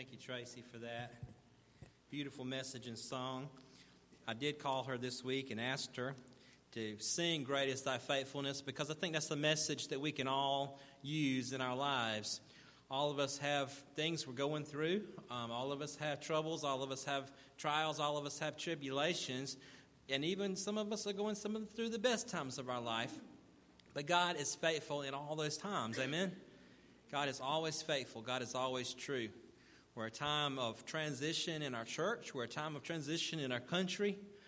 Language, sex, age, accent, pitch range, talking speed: English, male, 40-59, American, 125-150 Hz, 195 wpm